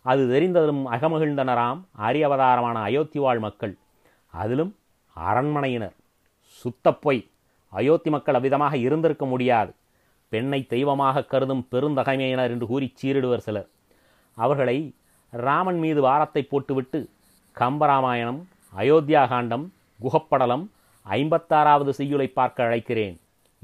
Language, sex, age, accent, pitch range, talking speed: Tamil, male, 30-49, native, 115-150 Hz, 90 wpm